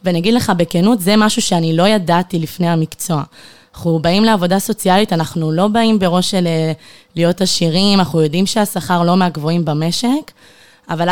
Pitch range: 160-190 Hz